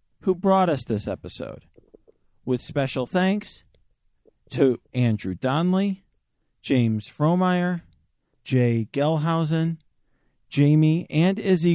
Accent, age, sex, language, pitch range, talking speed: American, 40-59, male, English, 125-180 Hz, 90 wpm